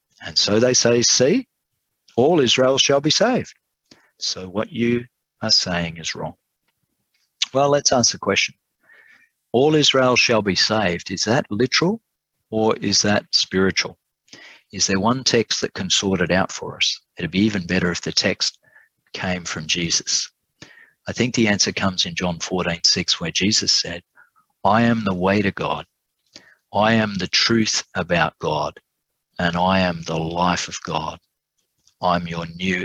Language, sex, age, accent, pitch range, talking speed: English, male, 50-69, Australian, 90-115 Hz, 165 wpm